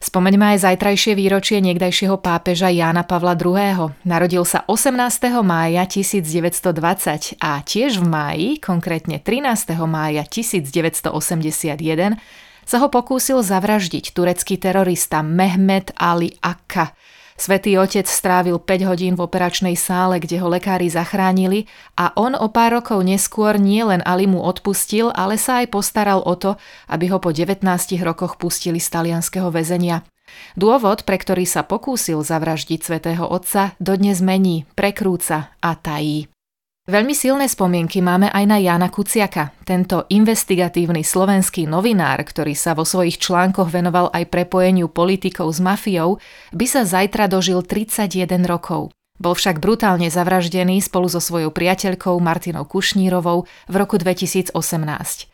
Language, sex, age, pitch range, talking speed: Slovak, female, 30-49, 170-195 Hz, 130 wpm